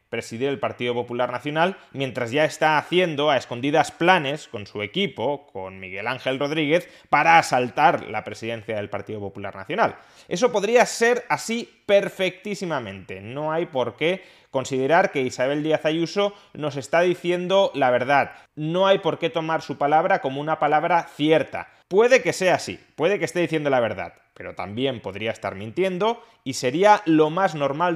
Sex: male